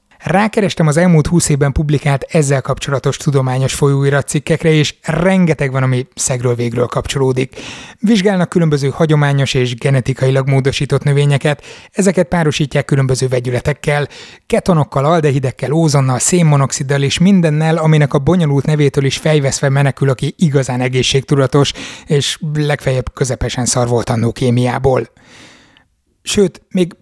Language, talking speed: Hungarian, 115 wpm